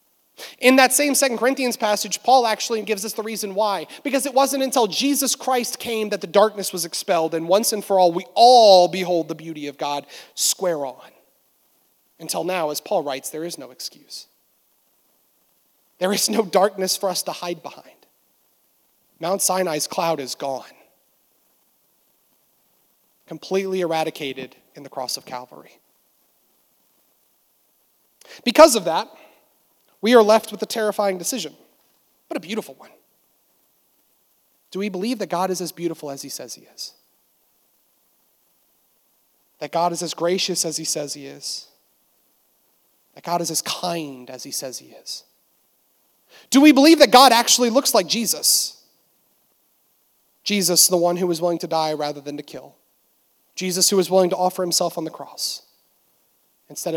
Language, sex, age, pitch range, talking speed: English, male, 30-49, 160-220 Hz, 155 wpm